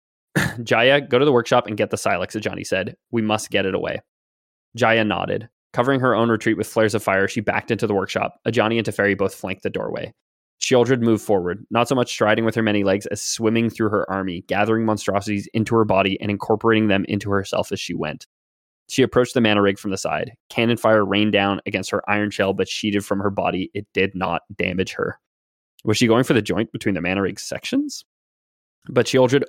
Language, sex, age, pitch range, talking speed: English, male, 20-39, 100-115 Hz, 215 wpm